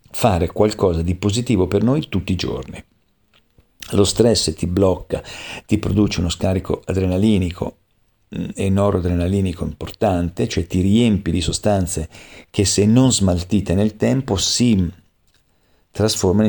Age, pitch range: 50-69, 90-110 Hz